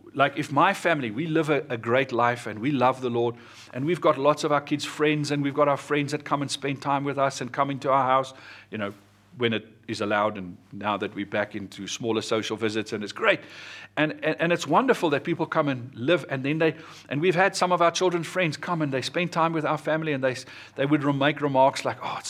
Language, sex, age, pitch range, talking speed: English, male, 50-69, 115-160 Hz, 260 wpm